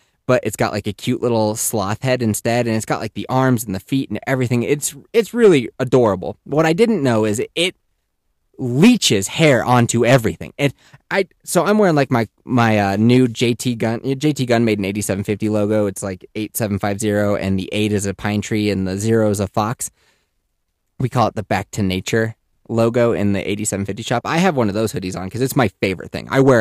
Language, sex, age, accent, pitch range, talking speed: English, male, 20-39, American, 105-140 Hz, 215 wpm